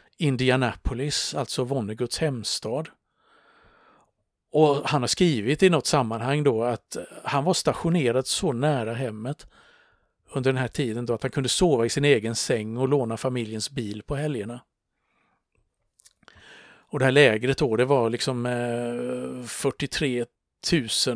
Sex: male